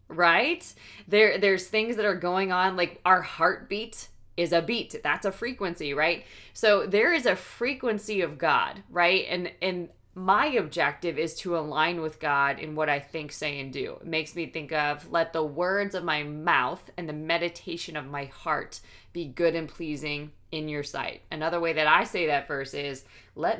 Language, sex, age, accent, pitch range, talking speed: English, female, 20-39, American, 160-200 Hz, 190 wpm